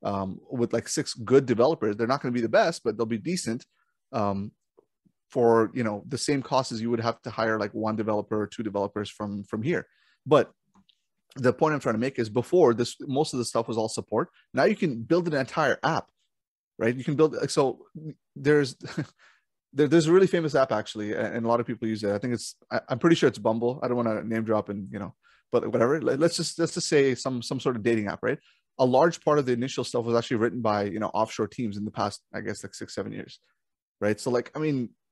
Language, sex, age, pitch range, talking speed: English, male, 30-49, 110-135 Hz, 250 wpm